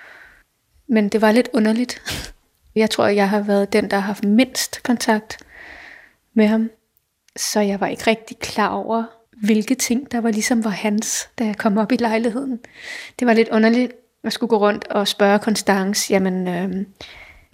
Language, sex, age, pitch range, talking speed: Danish, female, 20-39, 210-240 Hz, 175 wpm